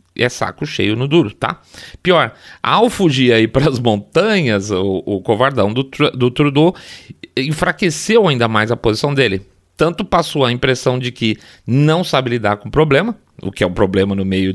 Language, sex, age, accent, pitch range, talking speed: Portuguese, male, 30-49, Brazilian, 105-160 Hz, 180 wpm